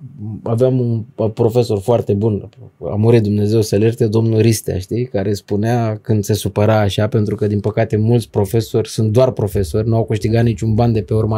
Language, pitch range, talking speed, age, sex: Romanian, 110-150 Hz, 190 wpm, 20-39, male